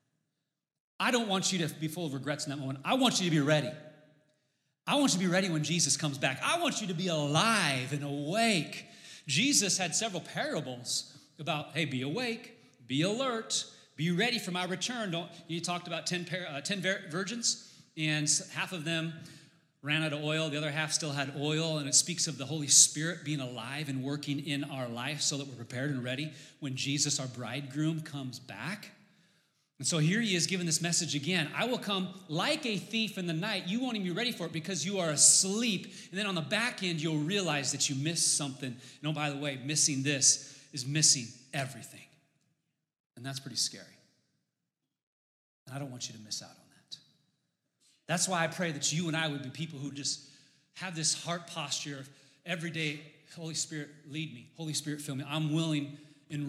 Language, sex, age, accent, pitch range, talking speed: English, male, 30-49, American, 145-175 Hz, 205 wpm